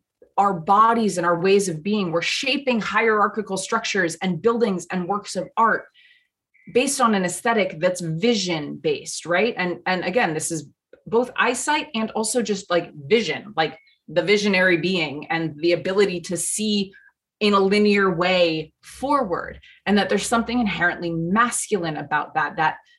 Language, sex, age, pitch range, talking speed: English, female, 20-39, 180-235 Hz, 155 wpm